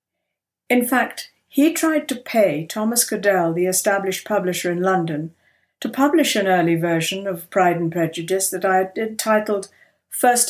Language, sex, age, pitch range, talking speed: English, female, 60-79, 170-230 Hz, 155 wpm